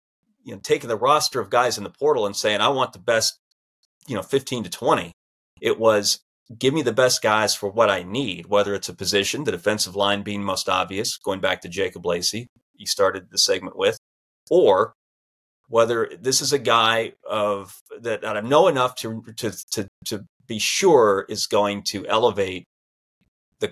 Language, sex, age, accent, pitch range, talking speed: English, male, 30-49, American, 95-125 Hz, 185 wpm